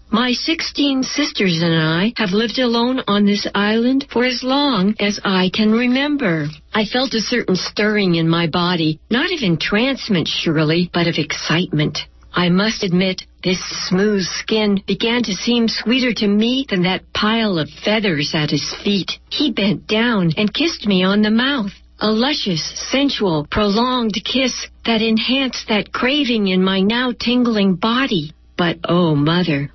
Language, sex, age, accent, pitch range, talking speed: English, female, 60-79, American, 180-250 Hz, 160 wpm